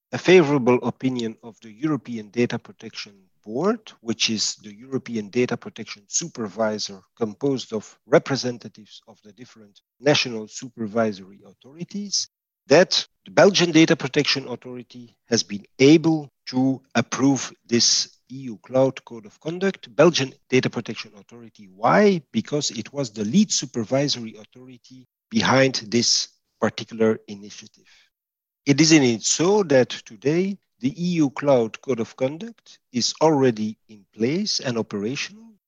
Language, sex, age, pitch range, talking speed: English, male, 50-69, 115-155 Hz, 130 wpm